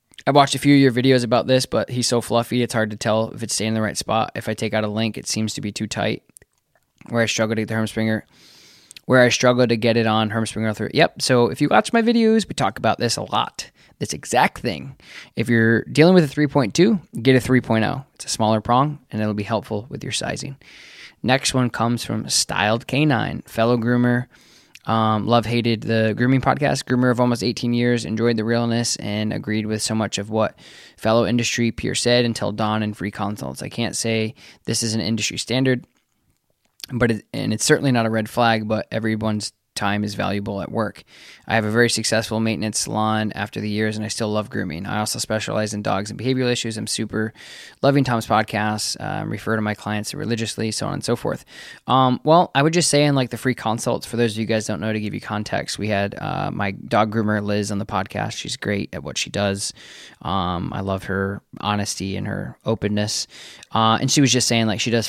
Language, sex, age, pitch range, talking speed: English, male, 20-39, 105-125 Hz, 225 wpm